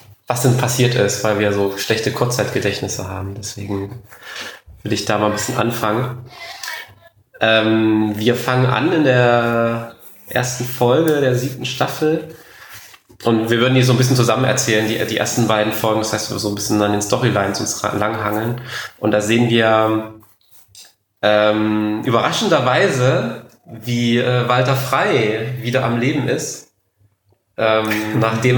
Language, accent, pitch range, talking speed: German, German, 110-125 Hz, 145 wpm